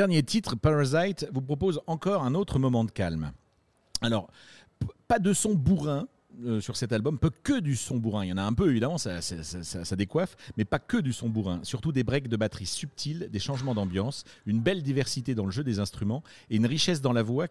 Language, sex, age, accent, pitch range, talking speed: French, male, 40-59, French, 110-150 Hz, 230 wpm